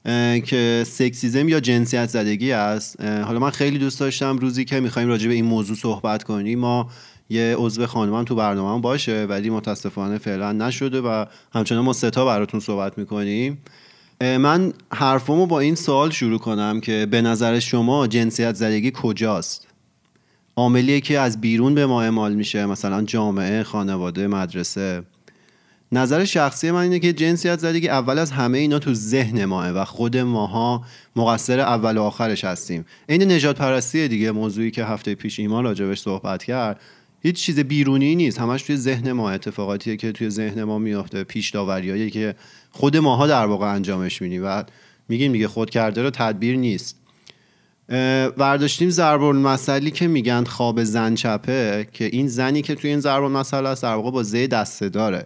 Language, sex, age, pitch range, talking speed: Persian, male, 30-49, 105-135 Hz, 165 wpm